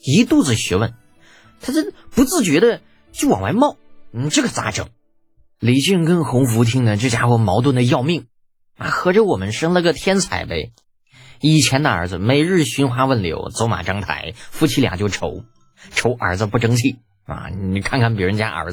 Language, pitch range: Chinese, 95-150 Hz